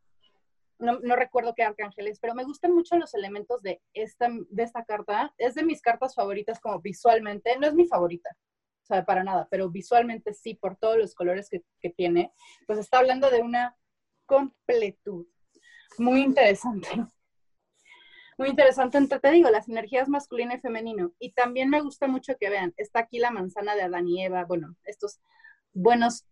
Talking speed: 175 wpm